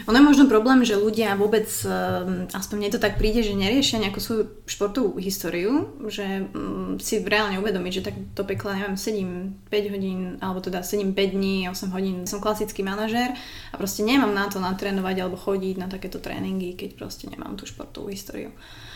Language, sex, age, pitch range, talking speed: Slovak, female, 20-39, 195-220 Hz, 180 wpm